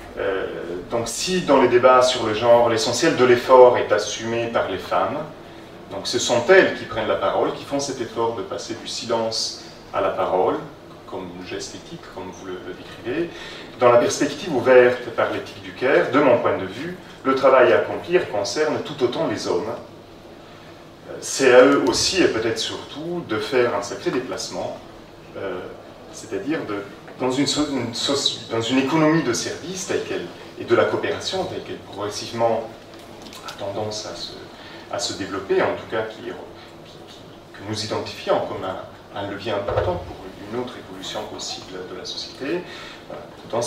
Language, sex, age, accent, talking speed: French, male, 30-49, French, 175 wpm